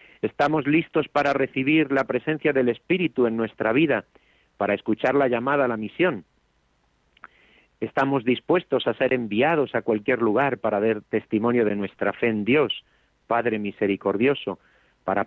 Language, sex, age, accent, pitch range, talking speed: Spanish, male, 40-59, Spanish, 100-125 Hz, 145 wpm